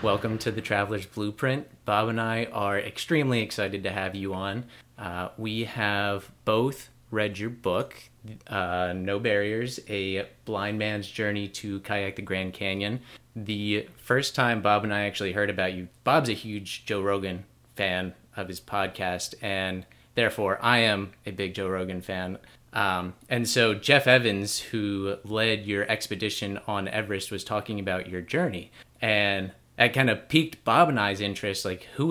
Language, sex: English, male